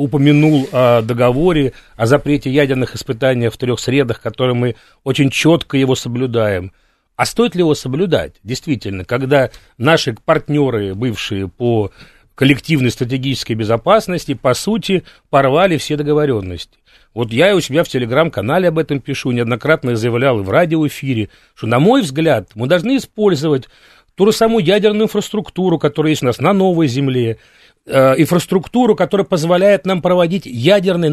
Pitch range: 130-185 Hz